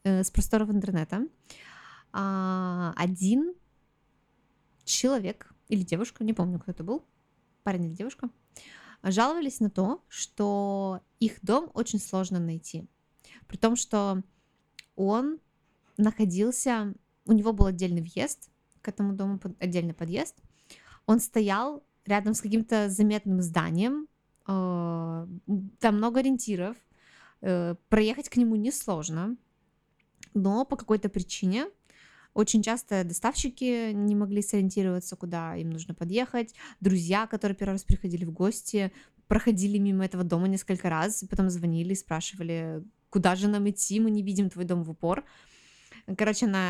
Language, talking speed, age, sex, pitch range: Russian, 125 wpm, 20-39, female, 180-220 Hz